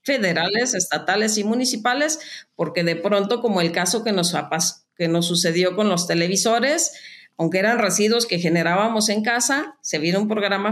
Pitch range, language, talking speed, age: 165-220 Hz, Spanish, 160 wpm, 40-59